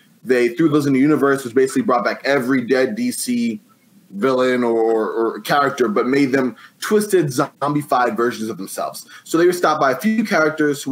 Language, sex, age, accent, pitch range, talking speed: English, male, 20-39, American, 125-155 Hz, 190 wpm